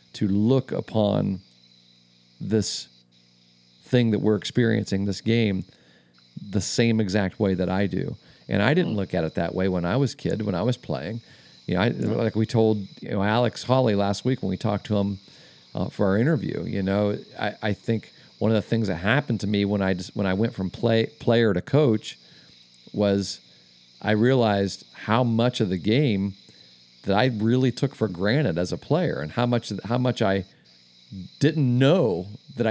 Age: 40-59